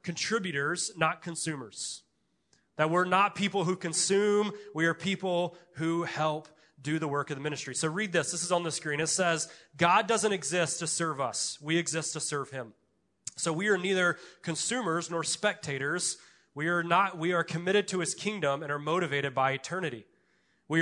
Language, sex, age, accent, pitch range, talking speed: English, male, 30-49, American, 150-180 Hz, 180 wpm